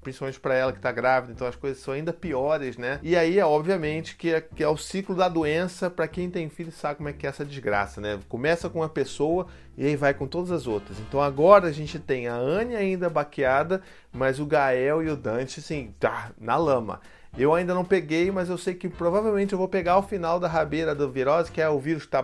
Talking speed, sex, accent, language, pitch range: 240 wpm, male, Brazilian, Portuguese, 140-175 Hz